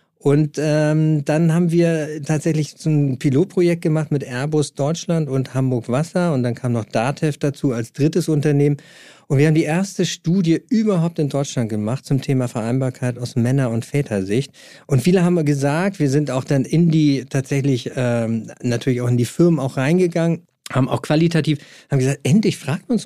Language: German